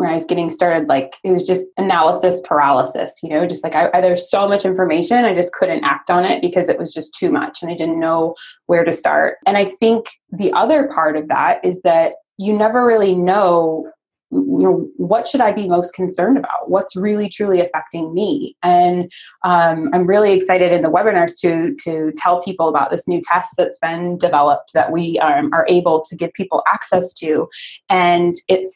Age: 20-39